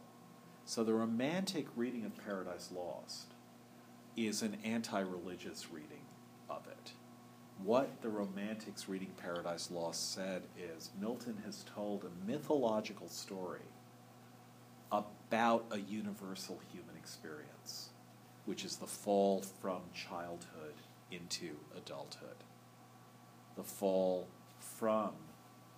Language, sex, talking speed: English, male, 100 wpm